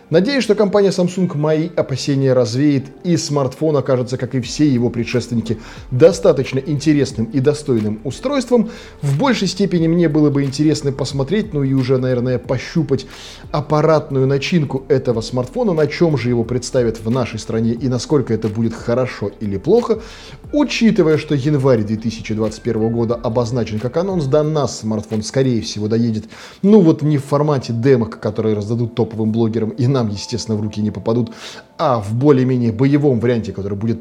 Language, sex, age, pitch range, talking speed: Russian, male, 20-39, 115-155 Hz, 160 wpm